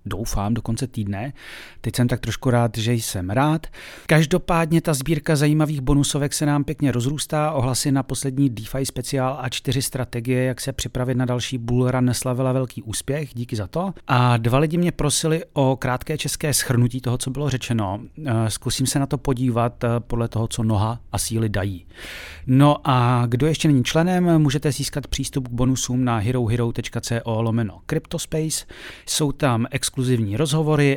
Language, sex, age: Czech, male, 40-59